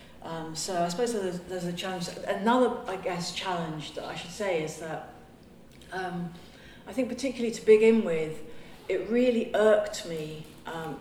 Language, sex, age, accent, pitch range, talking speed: English, female, 40-59, British, 170-225 Hz, 165 wpm